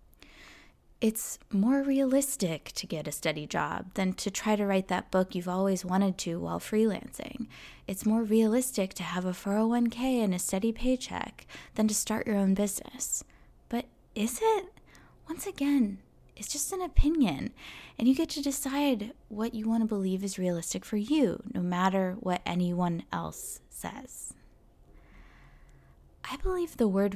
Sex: female